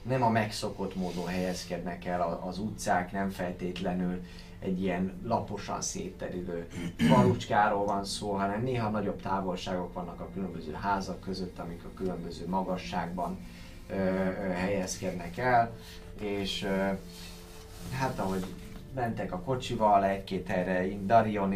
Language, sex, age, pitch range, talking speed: Hungarian, male, 20-39, 90-110 Hz, 125 wpm